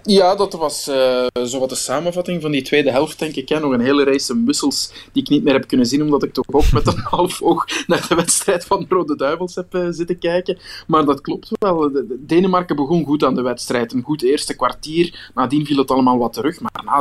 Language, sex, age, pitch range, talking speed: Dutch, male, 20-39, 125-150 Hz, 245 wpm